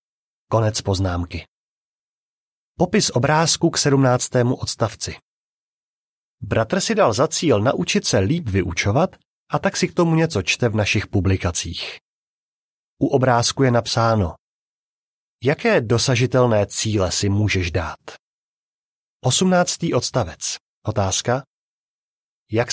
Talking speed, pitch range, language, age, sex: 105 wpm, 105-145 Hz, Czech, 30-49, male